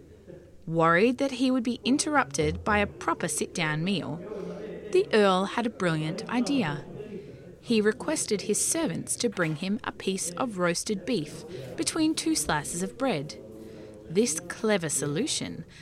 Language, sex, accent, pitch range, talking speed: English, female, Australian, 165-260 Hz, 140 wpm